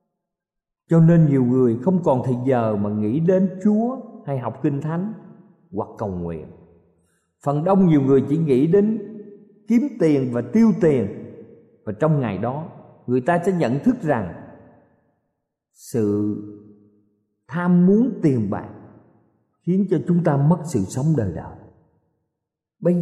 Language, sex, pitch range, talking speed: Vietnamese, male, 110-160 Hz, 145 wpm